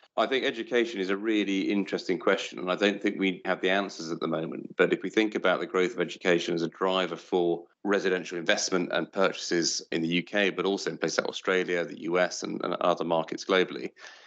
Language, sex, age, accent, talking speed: English, male, 40-59, British, 210 wpm